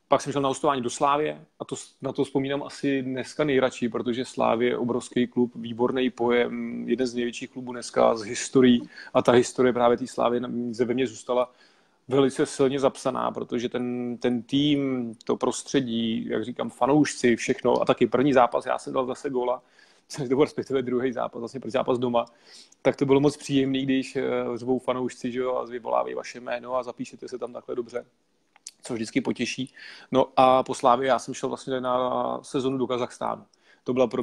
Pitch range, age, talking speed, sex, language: 125-135 Hz, 30-49, 185 wpm, male, Slovak